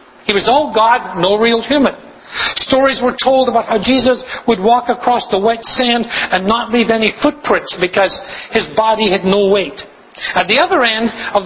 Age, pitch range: 60-79, 195-255 Hz